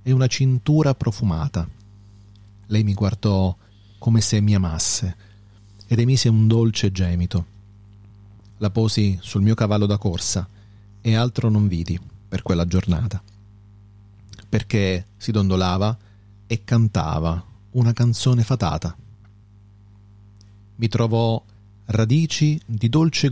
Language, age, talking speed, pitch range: Italian, 40-59, 110 wpm, 100-115 Hz